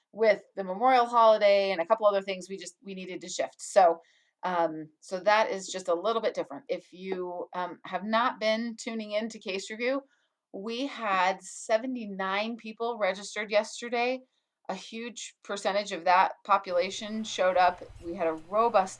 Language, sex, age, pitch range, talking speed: English, female, 30-49, 175-220 Hz, 175 wpm